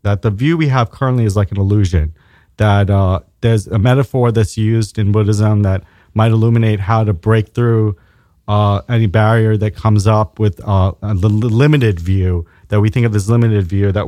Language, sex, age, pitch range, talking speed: English, male, 30-49, 100-130 Hz, 190 wpm